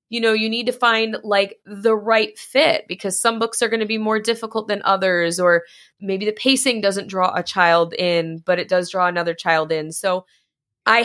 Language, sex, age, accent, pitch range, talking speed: English, female, 20-39, American, 165-215 Hz, 210 wpm